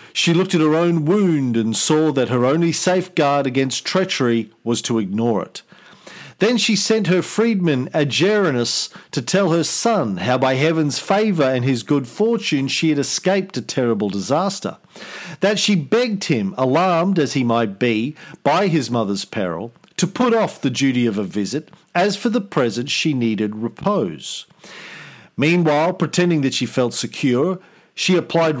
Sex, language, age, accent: male, English, 50-69, Australian